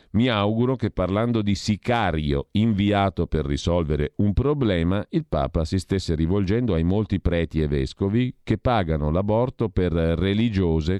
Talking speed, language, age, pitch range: 140 wpm, Italian, 50-69, 80-100 Hz